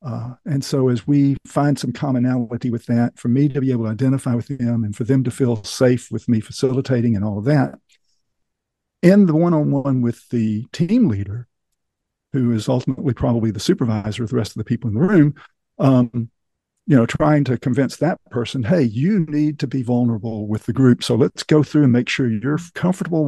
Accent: American